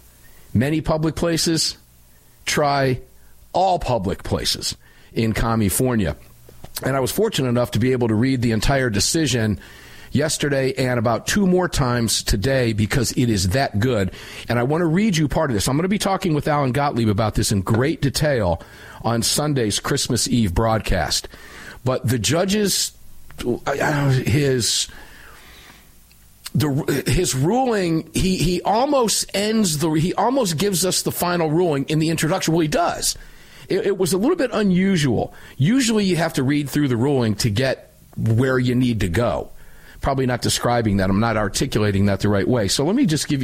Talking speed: 170 wpm